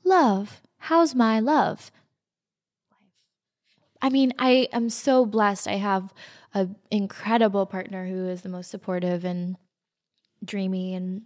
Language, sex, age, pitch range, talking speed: English, female, 20-39, 185-215 Hz, 125 wpm